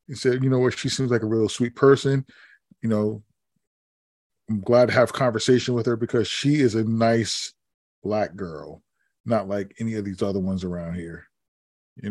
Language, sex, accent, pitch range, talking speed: English, male, American, 105-130 Hz, 195 wpm